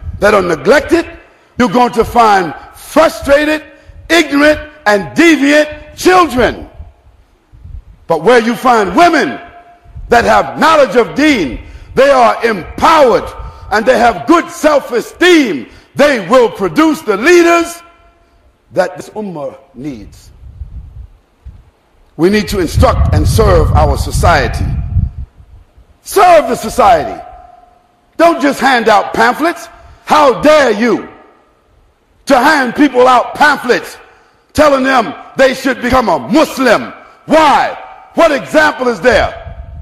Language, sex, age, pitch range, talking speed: English, male, 50-69, 230-330 Hz, 115 wpm